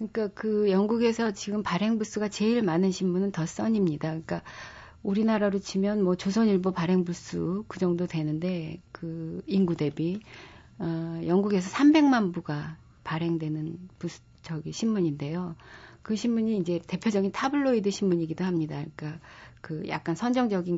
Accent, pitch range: native, 170-215 Hz